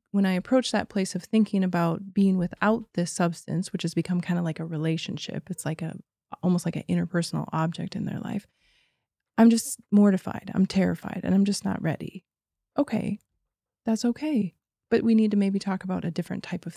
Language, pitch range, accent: English, 165-195 Hz, American